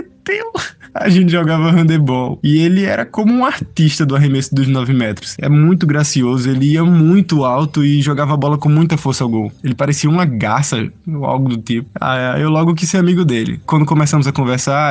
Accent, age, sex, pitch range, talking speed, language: Brazilian, 20-39, male, 130-155 Hz, 200 wpm, Portuguese